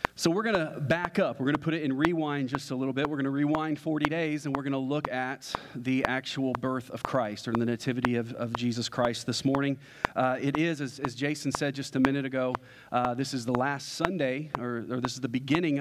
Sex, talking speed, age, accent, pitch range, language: male, 250 wpm, 40-59, American, 125-145 Hz, English